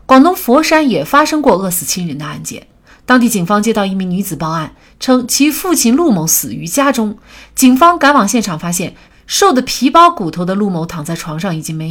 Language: Chinese